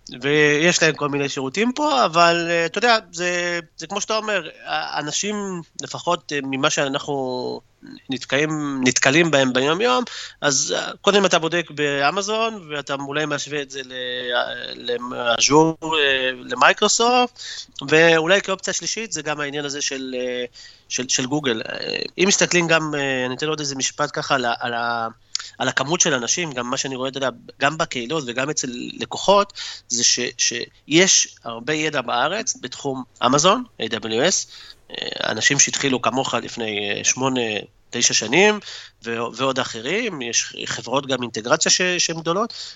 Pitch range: 125-170 Hz